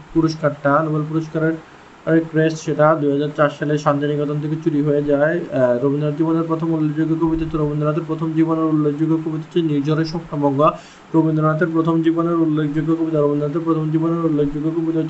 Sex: male